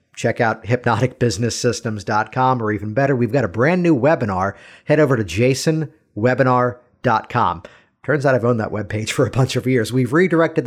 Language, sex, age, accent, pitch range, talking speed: English, male, 50-69, American, 115-150 Hz, 165 wpm